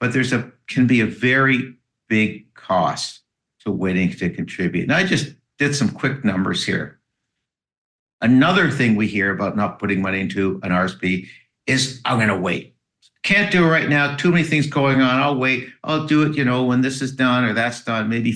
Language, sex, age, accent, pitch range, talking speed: English, male, 60-79, American, 105-135 Hz, 205 wpm